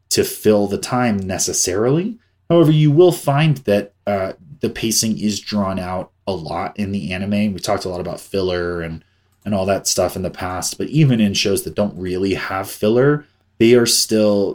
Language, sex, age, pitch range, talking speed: English, male, 30-49, 95-115 Hz, 195 wpm